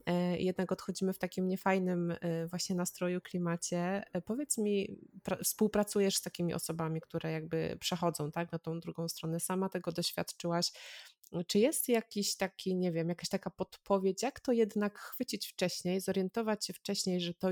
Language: Polish